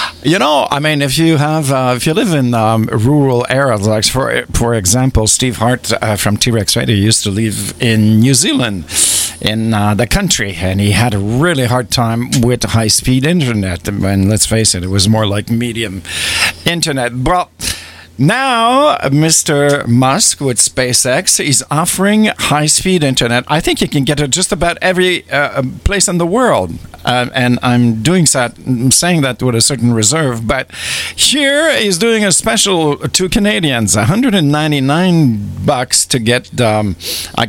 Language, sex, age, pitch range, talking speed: English, male, 50-69, 110-155 Hz, 175 wpm